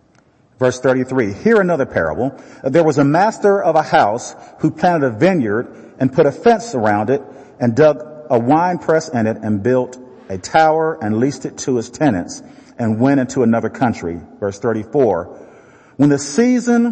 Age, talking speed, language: 40-59, 175 wpm, English